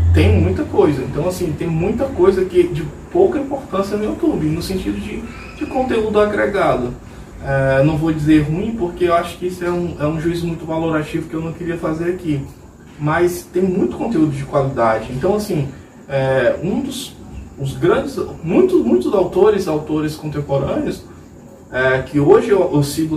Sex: male